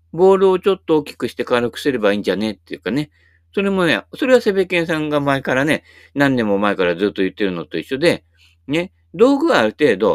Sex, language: male, Japanese